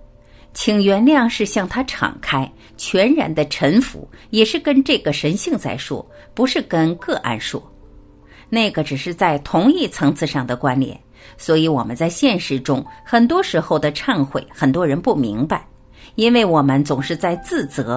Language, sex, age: Chinese, female, 50-69